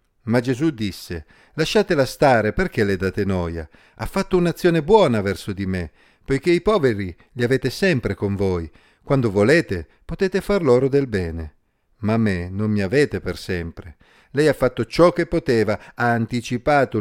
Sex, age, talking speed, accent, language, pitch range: male, 50-69, 160 wpm, native, Italian, 100-140 Hz